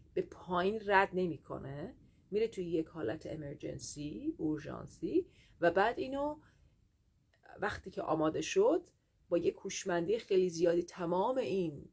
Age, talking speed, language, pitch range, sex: 30-49, 120 wpm, Persian, 165-205 Hz, female